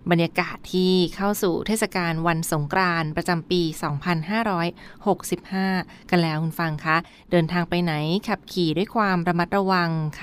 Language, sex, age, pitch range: Thai, female, 20-39, 160-190 Hz